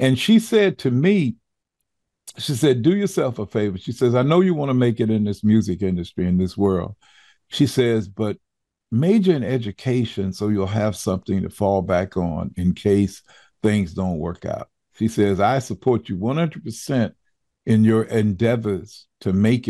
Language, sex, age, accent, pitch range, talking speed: English, male, 50-69, American, 105-165 Hz, 175 wpm